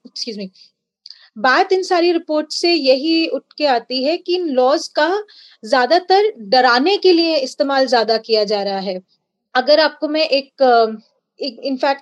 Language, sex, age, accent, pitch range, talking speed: Hindi, female, 30-49, native, 255-330 Hz, 70 wpm